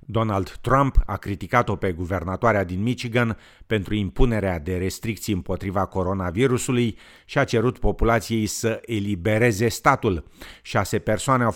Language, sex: Romanian, male